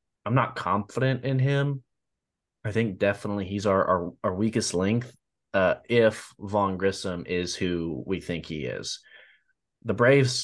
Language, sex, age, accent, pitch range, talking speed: English, male, 20-39, American, 90-110 Hz, 150 wpm